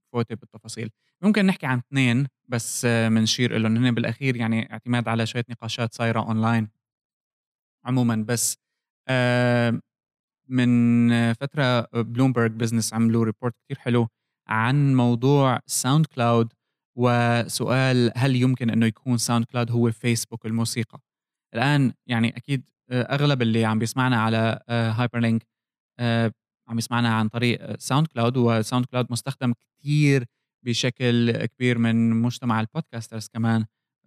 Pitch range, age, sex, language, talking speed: 115-130 Hz, 20-39, male, Arabic, 120 wpm